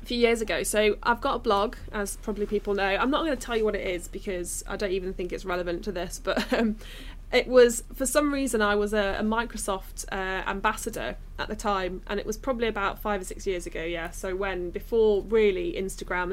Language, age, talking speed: English, 20-39, 230 wpm